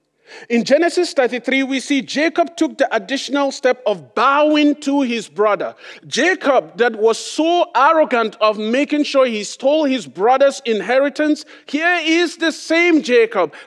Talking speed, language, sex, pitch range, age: 145 wpm, English, male, 220-300 Hz, 40-59